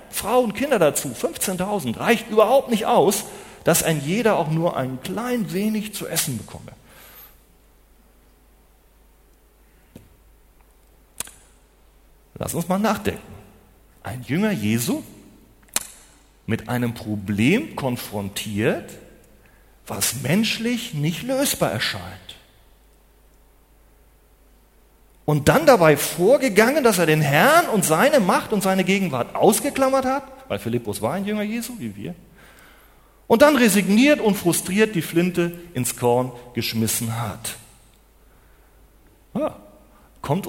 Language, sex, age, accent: German, male, 40-59, German